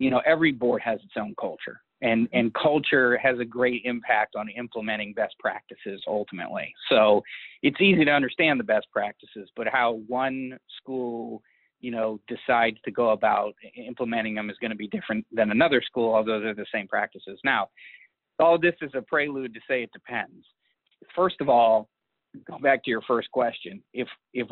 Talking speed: 180 wpm